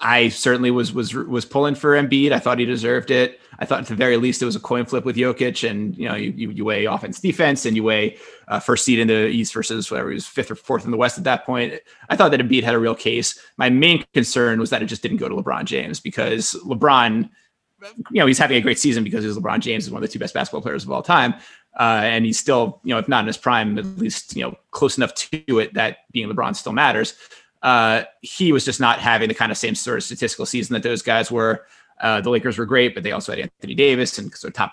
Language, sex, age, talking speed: English, male, 20-39, 270 wpm